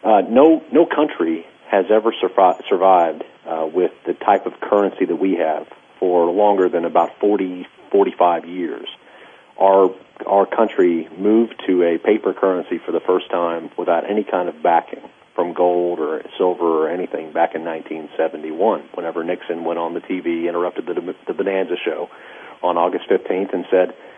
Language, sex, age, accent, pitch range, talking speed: English, male, 40-59, American, 90-100 Hz, 165 wpm